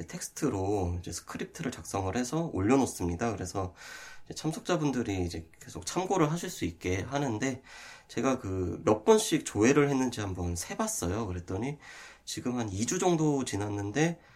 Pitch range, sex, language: 95-145 Hz, male, Korean